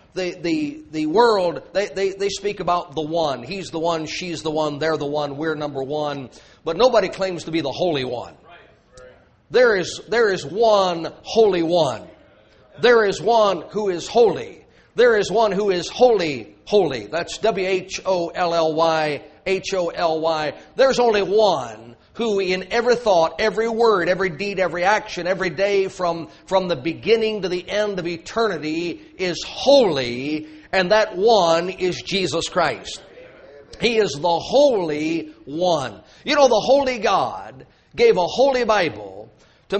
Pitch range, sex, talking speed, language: 165-220 Hz, male, 150 wpm, English